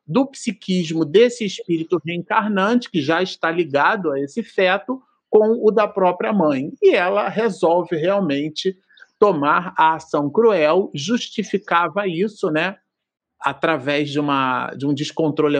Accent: Brazilian